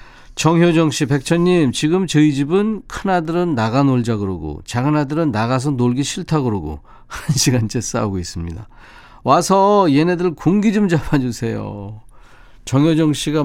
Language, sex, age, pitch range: Korean, male, 40-59, 105-155 Hz